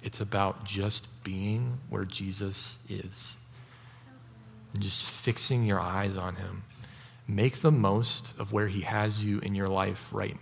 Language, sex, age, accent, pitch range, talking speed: English, male, 30-49, American, 105-120 Hz, 150 wpm